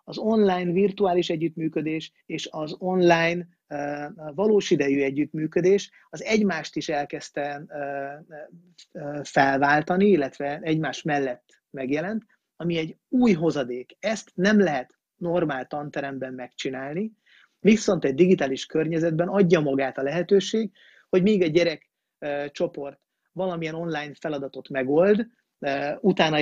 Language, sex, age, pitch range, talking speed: Hungarian, male, 30-49, 145-185 Hz, 105 wpm